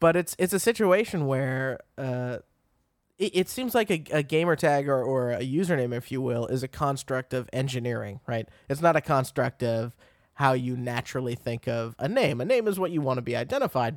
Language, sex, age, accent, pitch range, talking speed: English, male, 20-39, American, 120-150 Hz, 210 wpm